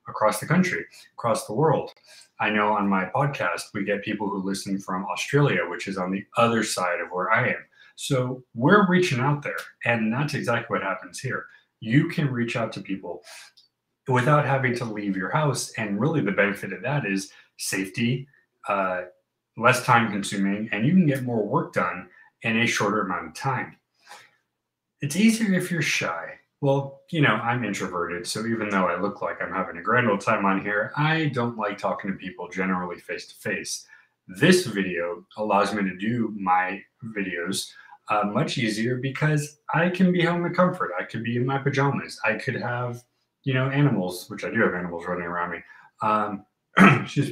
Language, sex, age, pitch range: English, male, 30-49, 100-140 Hz